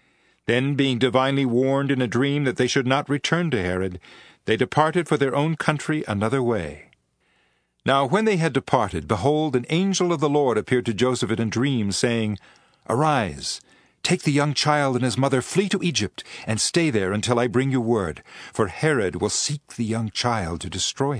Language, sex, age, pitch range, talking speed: English, male, 50-69, 110-150 Hz, 190 wpm